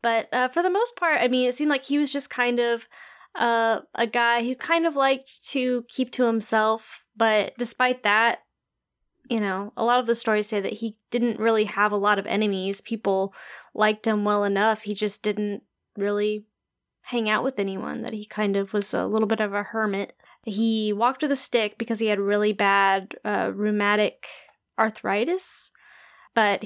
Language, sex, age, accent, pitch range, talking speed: English, female, 10-29, American, 205-235 Hz, 190 wpm